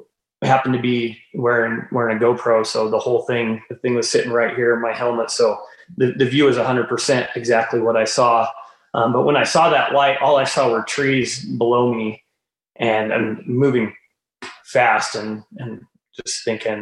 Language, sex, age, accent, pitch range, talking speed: English, male, 30-49, American, 115-130 Hz, 190 wpm